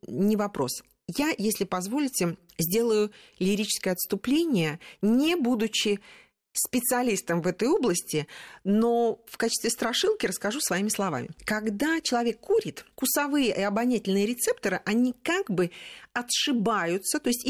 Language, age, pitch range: Russian, 40-59, 190-265 Hz